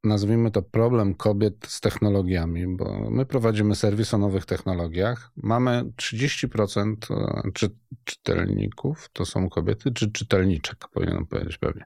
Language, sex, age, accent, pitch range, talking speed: Polish, male, 40-59, native, 100-130 Hz, 120 wpm